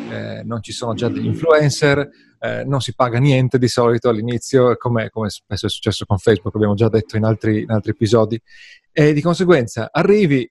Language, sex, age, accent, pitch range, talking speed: Italian, male, 30-49, native, 110-140 Hz, 190 wpm